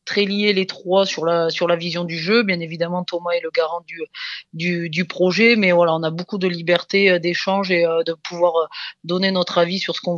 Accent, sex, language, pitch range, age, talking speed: French, female, French, 160-180 Hz, 20-39, 225 wpm